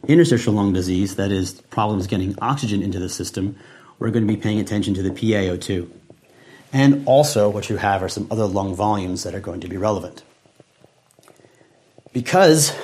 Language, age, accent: English, 40-59, American